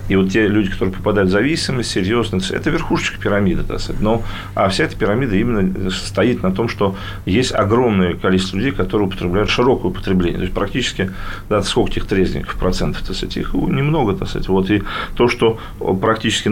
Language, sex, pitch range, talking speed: Russian, male, 95-120 Hz, 175 wpm